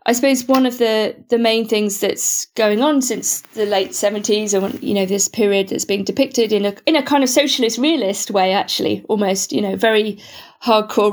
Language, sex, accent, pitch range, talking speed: English, female, British, 195-230 Hz, 205 wpm